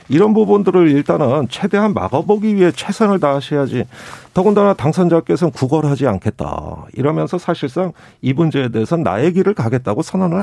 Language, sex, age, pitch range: Korean, male, 40-59, 145-215 Hz